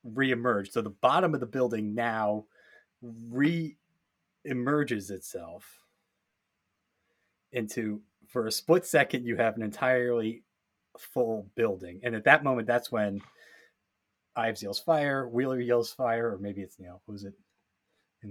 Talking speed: 140 wpm